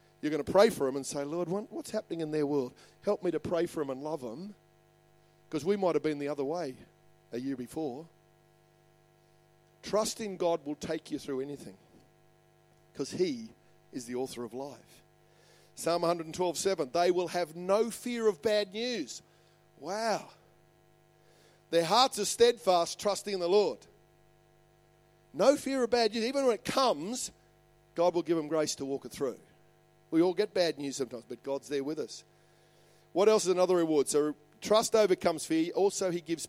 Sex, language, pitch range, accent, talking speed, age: male, English, 145-185 Hz, Australian, 180 wpm, 40-59